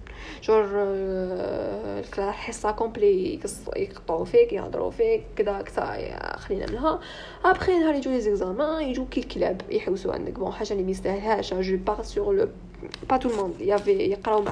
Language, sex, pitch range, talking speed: Arabic, female, 195-295 Hz, 150 wpm